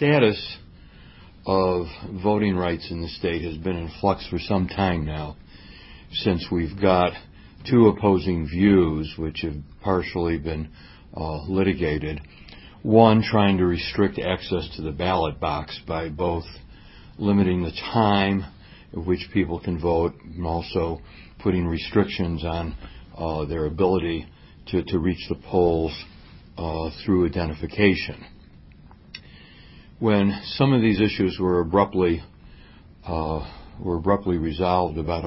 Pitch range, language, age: 80-95 Hz, English, 60-79